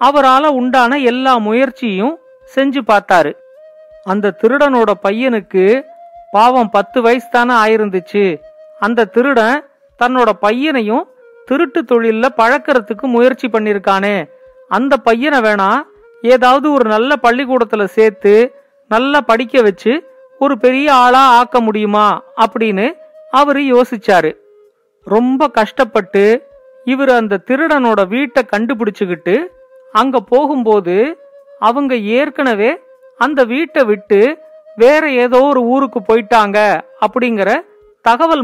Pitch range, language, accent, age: 225-285 Hz, Tamil, native, 50-69